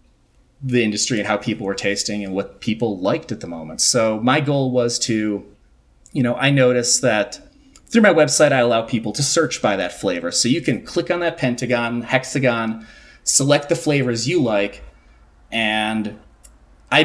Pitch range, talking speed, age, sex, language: 110-140 Hz, 175 wpm, 30-49, male, English